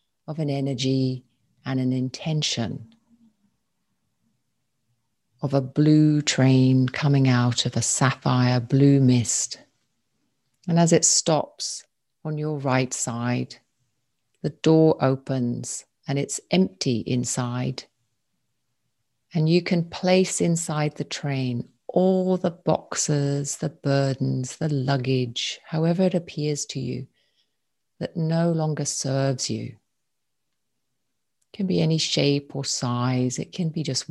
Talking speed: 120 wpm